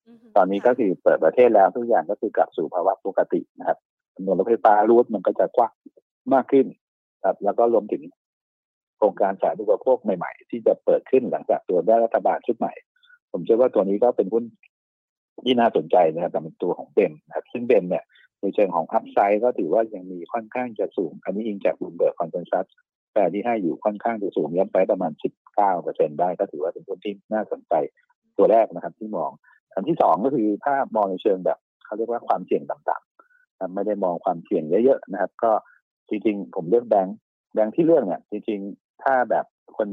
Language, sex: Thai, male